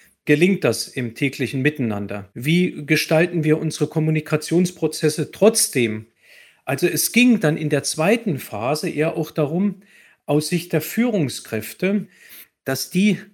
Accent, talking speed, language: German, 125 wpm, German